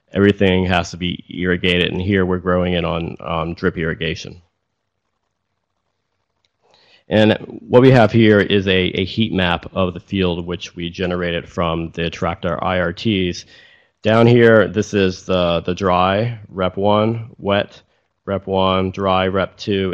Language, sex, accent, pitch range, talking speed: English, male, American, 90-105 Hz, 145 wpm